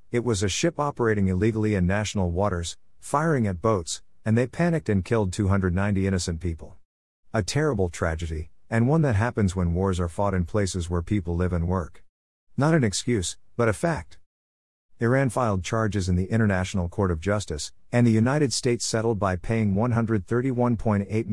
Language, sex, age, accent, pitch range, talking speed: English, male, 50-69, American, 90-115 Hz, 170 wpm